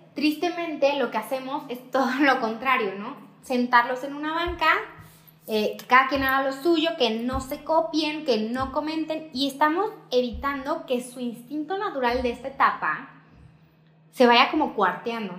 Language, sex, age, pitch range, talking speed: Spanish, female, 20-39, 210-265 Hz, 160 wpm